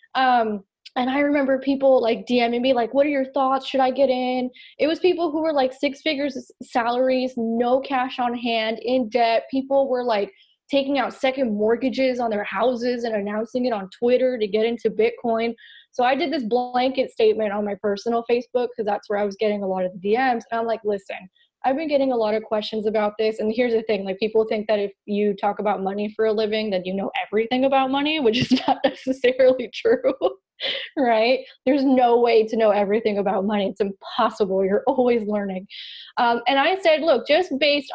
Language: English